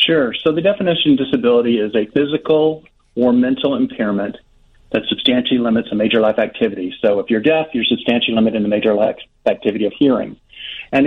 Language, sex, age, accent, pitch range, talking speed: English, male, 40-59, American, 115-135 Hz, 185 wpm